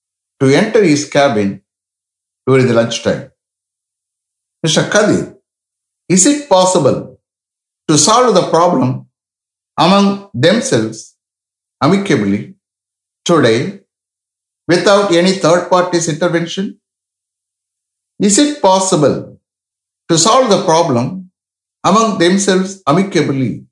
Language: English